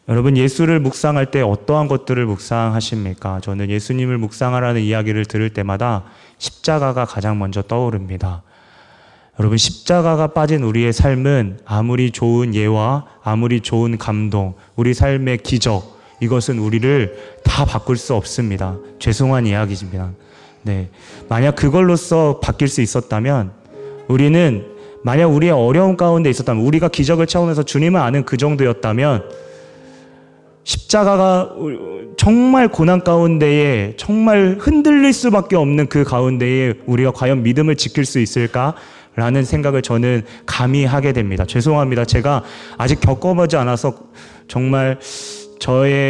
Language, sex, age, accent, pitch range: Korean, male, 30-49, native, 110-145 Hz